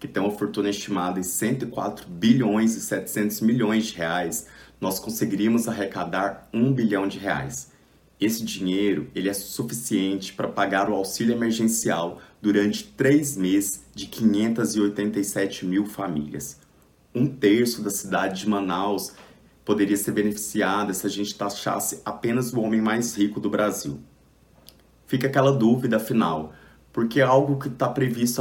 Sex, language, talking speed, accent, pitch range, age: male, Portuguese, 140 wpm, Brazilian, 100-120 Hz, 30-49